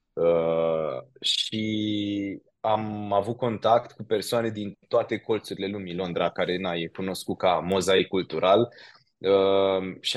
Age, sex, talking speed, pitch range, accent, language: 20-39, male, 125 wpm, 90-115 Hz, native, Romanian